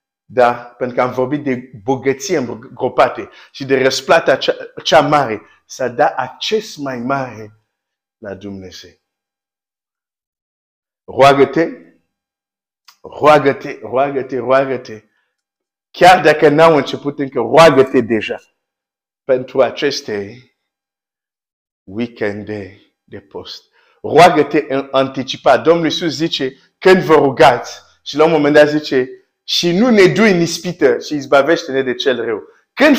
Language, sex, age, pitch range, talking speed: Romanian, male, 50-69, 125-170 Hz, 120 wpm